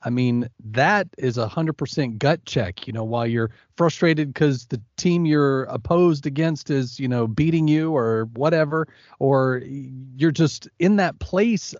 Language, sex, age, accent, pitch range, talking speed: English, male, 40-59, American, 130-170 Hz, 160 wpm